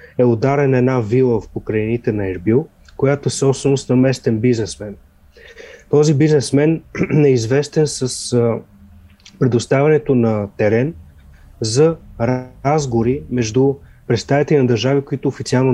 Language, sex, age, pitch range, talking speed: Bulgarian, male, 30-49, 110-140 Hz, 115 wpm